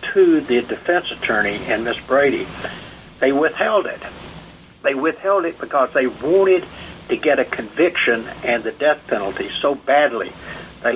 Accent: American